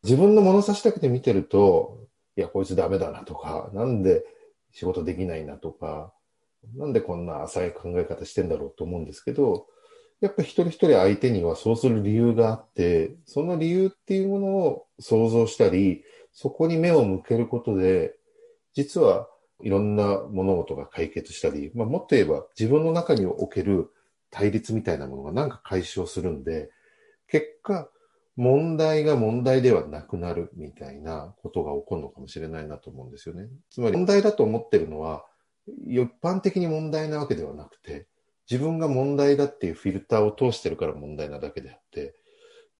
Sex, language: male, Japanese